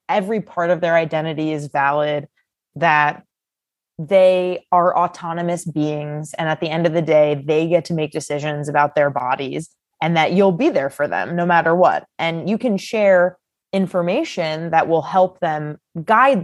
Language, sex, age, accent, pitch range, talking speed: English, female, 20-39, American, 155-195 Hz, 170 wpm